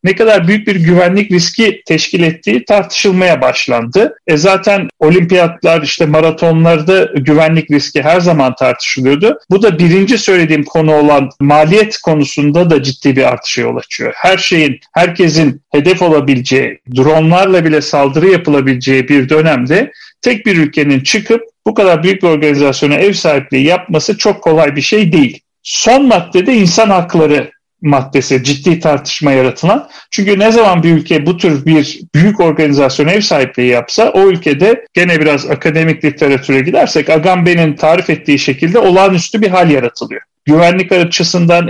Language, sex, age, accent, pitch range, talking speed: Turkish, male, 40-59, native, 150-195 Hz, 145 wpm